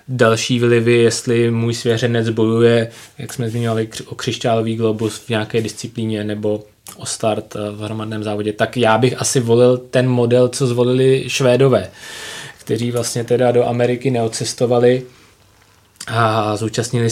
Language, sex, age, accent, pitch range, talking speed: Czech, male, 20-39, native, 110-130 Hz, 135 wpm